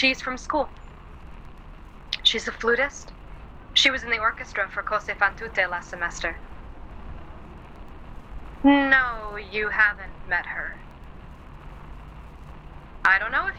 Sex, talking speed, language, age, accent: female, 110 wpm, English, 20-39, American